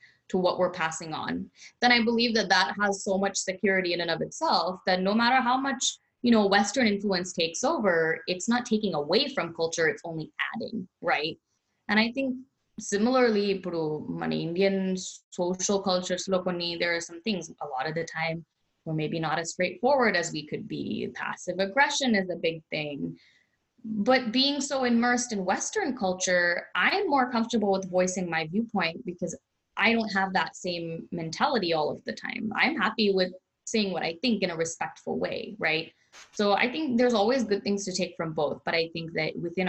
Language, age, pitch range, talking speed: Telugu, 20-39, 165-220 Hz, 190 wpm